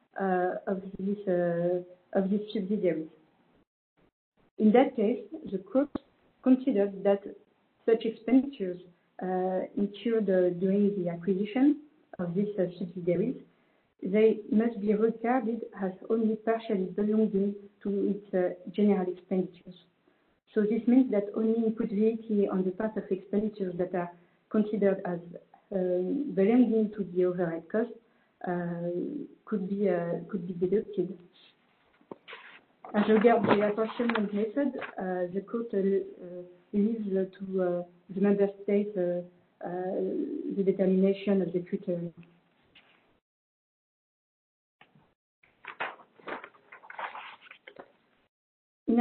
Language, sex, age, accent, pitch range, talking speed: English, female, 50-69, French, 185-225 Hz, 100 wpm